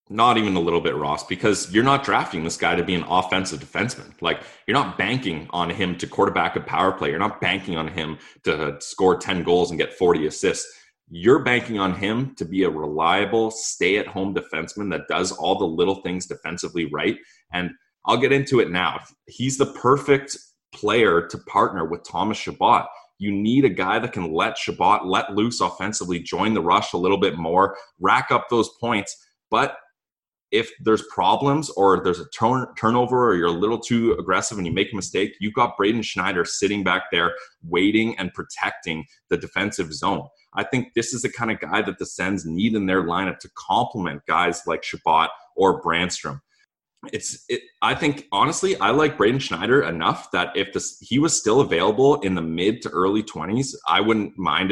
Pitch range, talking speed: 90-125 Hz, 195 wpm